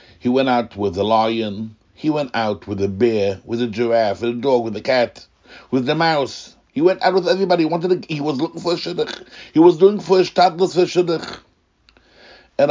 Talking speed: 225 wpm